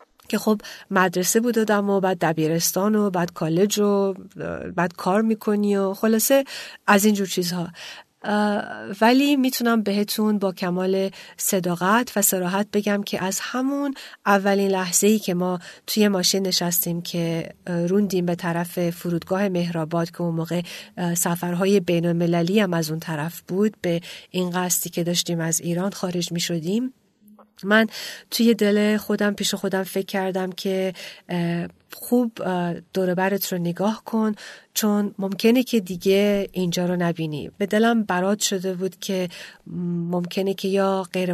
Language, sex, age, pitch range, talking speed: Persian, female, 40-59, 175-205 Hz, 140 wpm